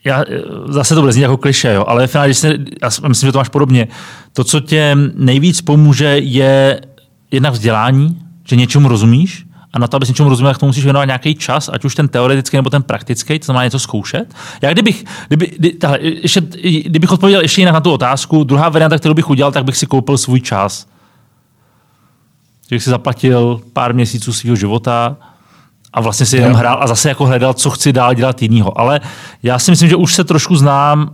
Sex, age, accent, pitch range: male, 30-49, native, 125-150 Hz